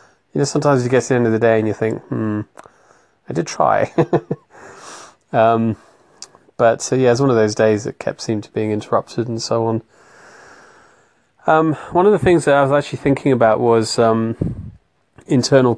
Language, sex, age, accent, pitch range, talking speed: English, male, 30-49, British, 105-120 Hz, 190 wpm